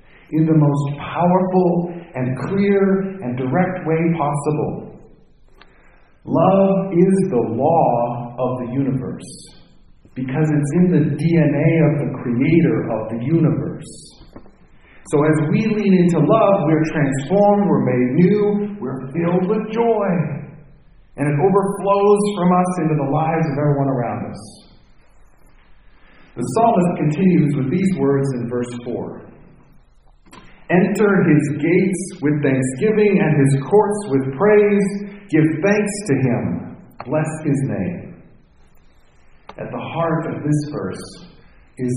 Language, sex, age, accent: English, male, 50-69, American